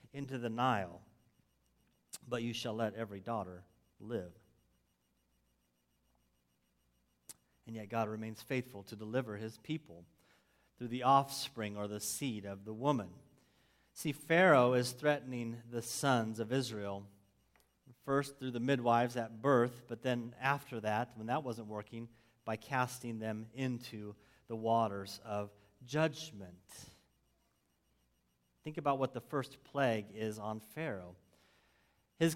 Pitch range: 105-140 Hz